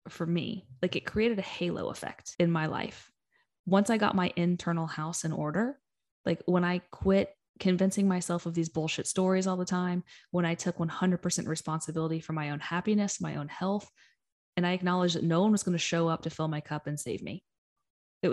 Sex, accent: female, American